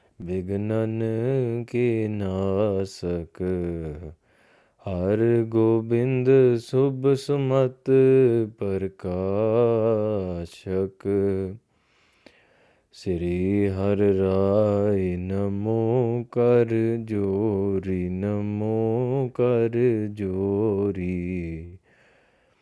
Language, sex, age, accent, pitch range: English, male, 20-39, Indian, 95-120 Hz